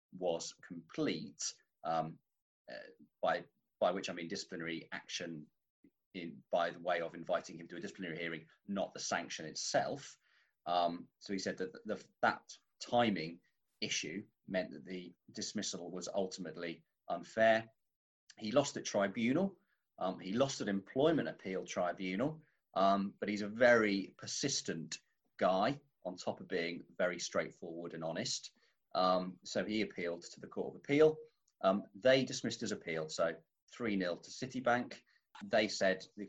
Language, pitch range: English, 85-110 Hz